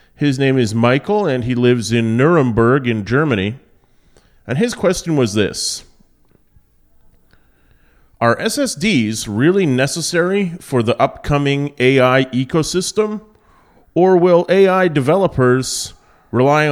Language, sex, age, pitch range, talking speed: English, male, 30-49, 115-150 Hz, 110 wpm